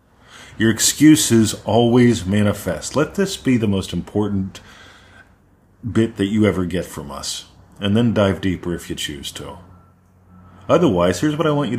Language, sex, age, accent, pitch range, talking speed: English, male, 40-59, American, 90-110 Hz, 160 wpm